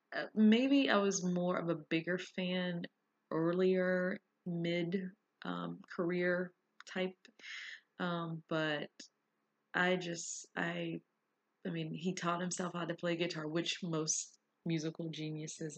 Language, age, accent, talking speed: English, 30-49, American, 115 wpm